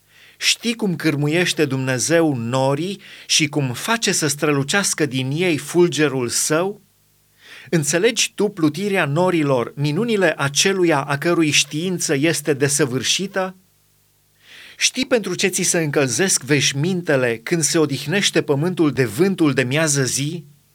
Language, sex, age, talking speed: Romanian, male, 30-49, 120 wpm